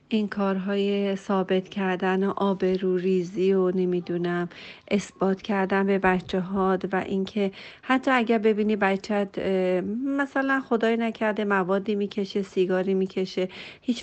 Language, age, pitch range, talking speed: Persian, 40-59, 185-210 Hz, 120 wpm